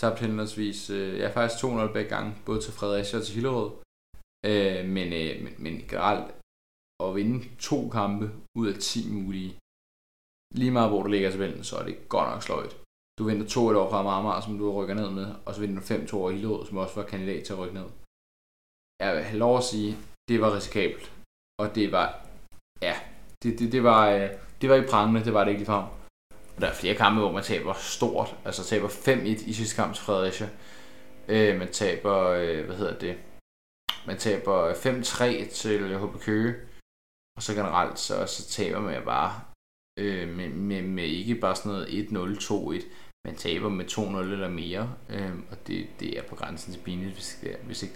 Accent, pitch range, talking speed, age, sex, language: native, 90-110 Hz, 190 wpm, 20-39, male, Danish